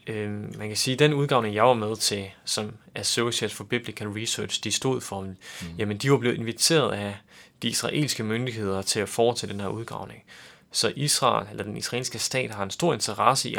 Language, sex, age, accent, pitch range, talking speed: Danish, male, 30-49, native, 100-120 Hz, 195 wpm